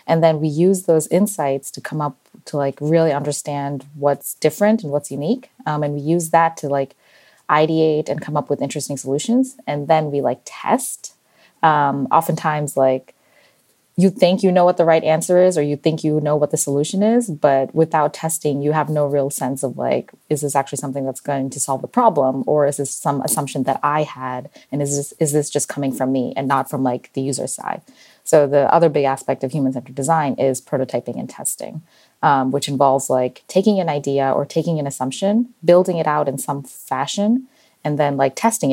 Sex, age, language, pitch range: female, 20-39, Thai, 135-160 Hz